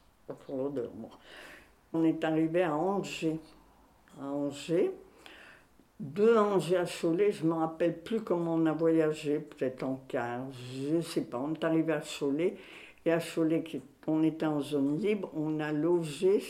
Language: French